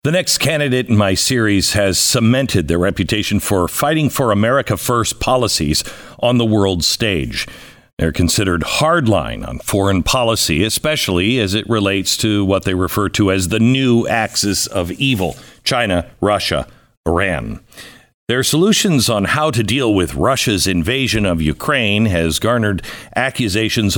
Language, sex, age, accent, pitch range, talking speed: English, male, 50-69, American, 95-130 Hz, 145 wpm